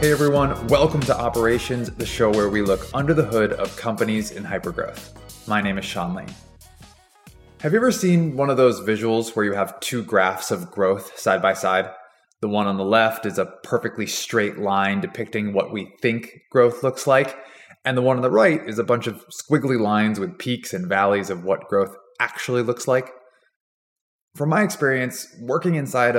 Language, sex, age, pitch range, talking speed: English, male, 20-39, 105-145 Hz, 190 wpm